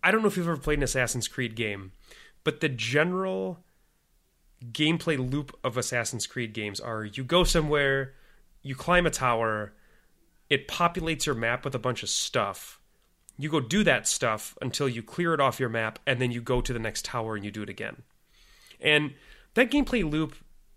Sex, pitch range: male, 125-170 Hz